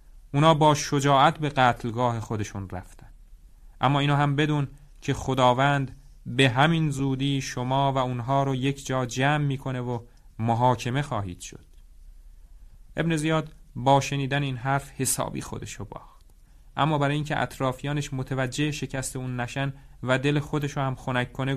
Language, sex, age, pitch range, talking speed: Persian, male, 30-49, 115-140 Hz, 145 wpm